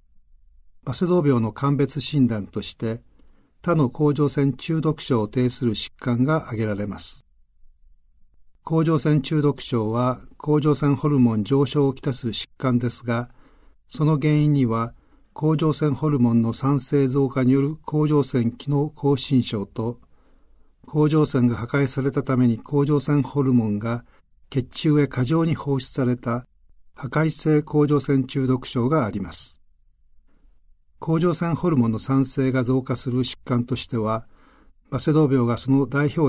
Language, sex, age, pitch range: Japanese, male, 50-69, 115-145 Hz